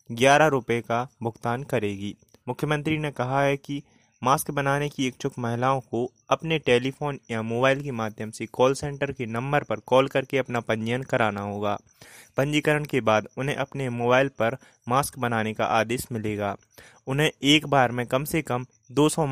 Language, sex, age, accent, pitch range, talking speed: Hindi, male, 20-39, native, 115-140 Hz, 170 wpm